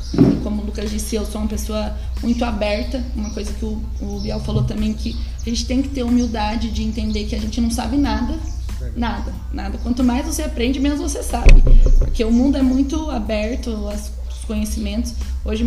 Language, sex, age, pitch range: Portuguese, female, 10-29, 215-265 Hz